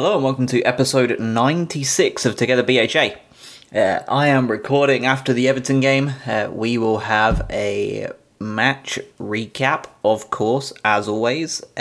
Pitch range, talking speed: 110-135 Hz, 140 wpm